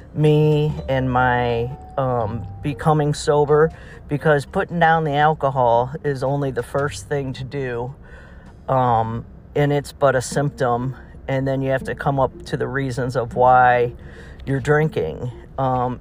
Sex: male